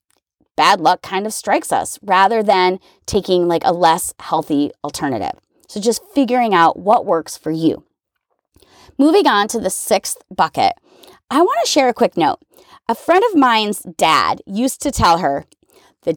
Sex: female